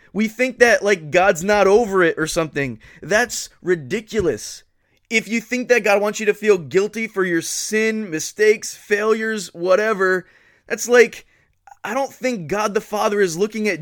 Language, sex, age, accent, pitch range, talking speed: English, male, 20-39, American, 155-195 Hz, 170 wpm